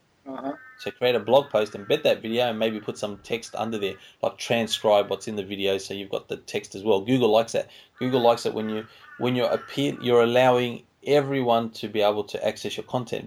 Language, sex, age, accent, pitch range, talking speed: English, male, 20-39, Australian, 105-120 Hz, 225 wpm